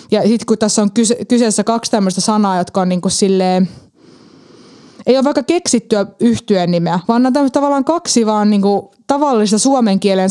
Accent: native